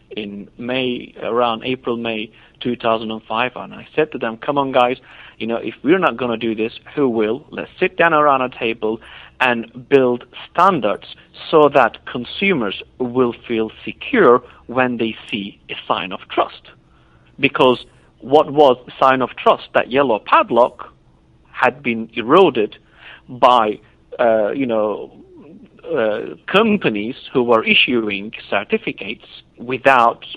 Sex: male